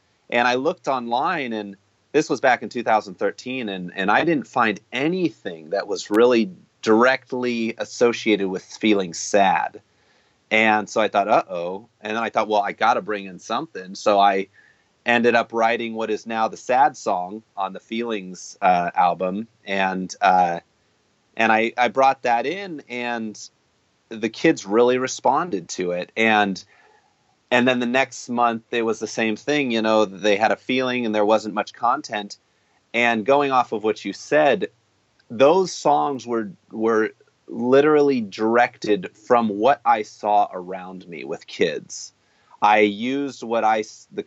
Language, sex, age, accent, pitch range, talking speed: English, male, 30-49, American, 105-120 Hz, 160 wpm